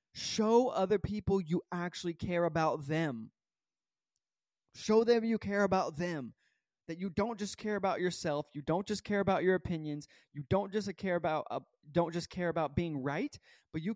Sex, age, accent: male, 20-39, American